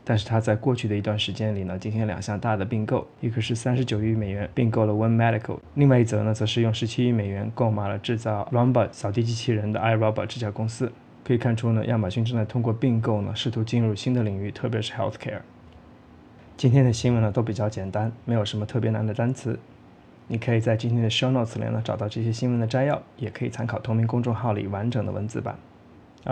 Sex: male